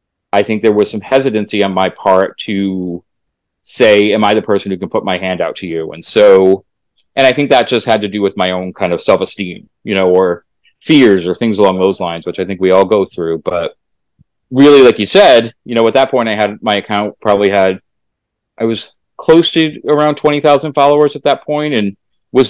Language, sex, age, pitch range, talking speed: English, male, 30-49, 95-120 Hz, 225 wpm